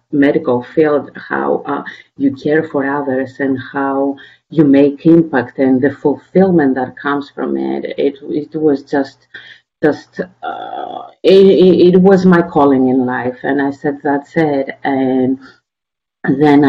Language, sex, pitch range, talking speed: English, female, 145-185 Hz, 145 wpm